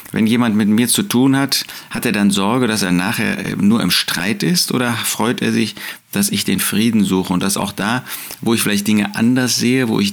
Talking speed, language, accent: 230 wpm, German, German